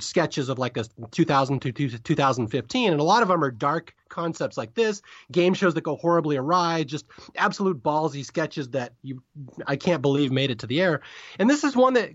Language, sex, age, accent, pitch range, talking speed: English, male, 30-49, American, 140-205 Hz, 210 wpm